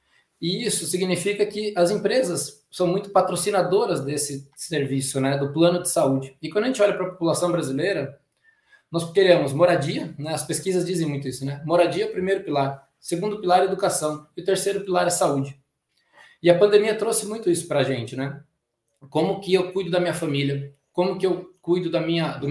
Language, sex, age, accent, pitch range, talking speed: Portuguese, male, 20-39, Brazilian, 145-185 Hz, 185 wpm